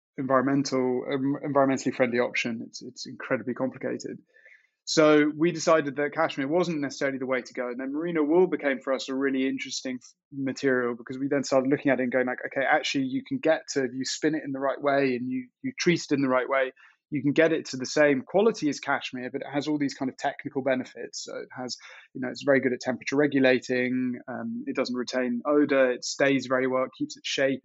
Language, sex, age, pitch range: English, male, 20-39, 130-155 Hz